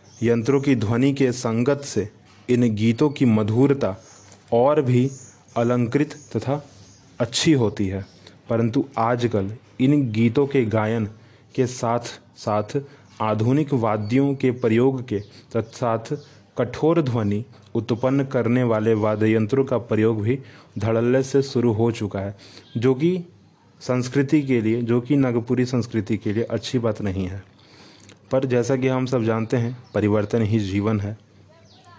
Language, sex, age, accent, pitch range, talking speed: Hindi, male, 30-49, native, 110-130 Hz, 135 wpm